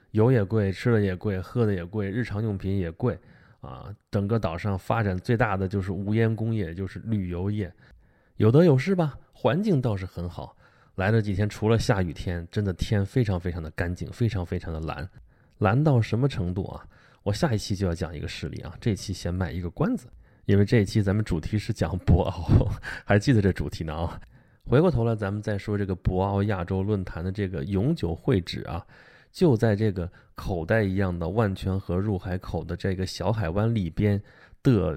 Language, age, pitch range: Chinese, 20-39, 90-115 Hz